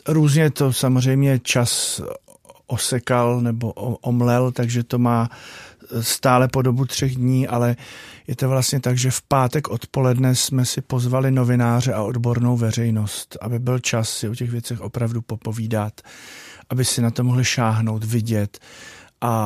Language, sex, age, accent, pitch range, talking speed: Czech, male, 40-59, native, 110-125 Hz, 150 wpm